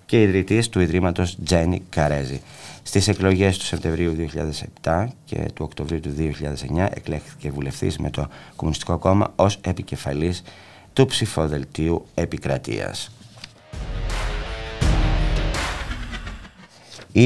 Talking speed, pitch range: 95 wpm, 75-100 Hz